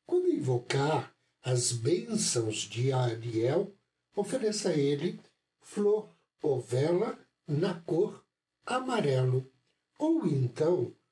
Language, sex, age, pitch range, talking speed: Portuguese, male, 60-79, 125-180 Hz, 85 wpm